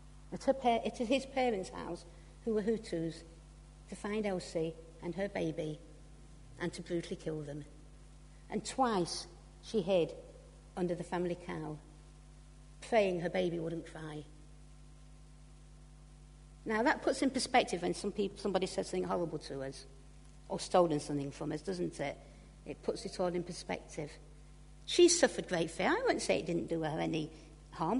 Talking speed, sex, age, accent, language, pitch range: 155 wpm, female, 60-79, British, English, 150-200 Hz